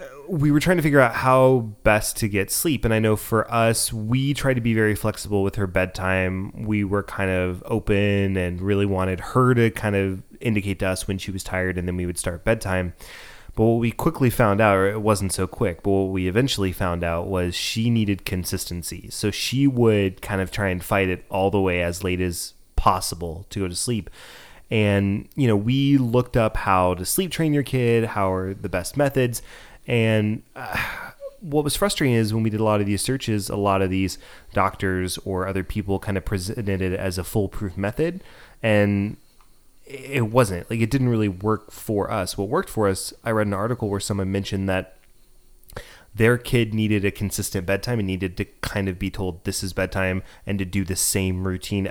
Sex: male